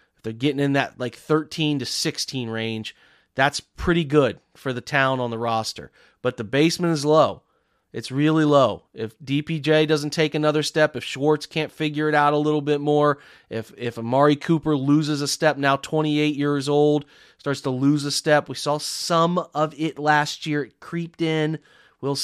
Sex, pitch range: male, 135-155 Hz